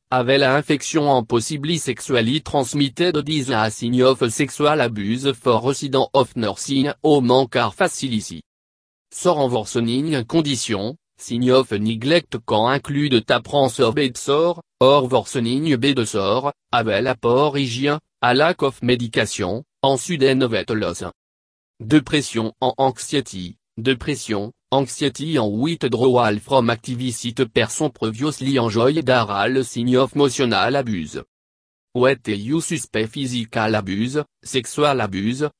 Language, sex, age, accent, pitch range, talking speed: English, male, 30-49, French, 115-145 Hz, 125 wpm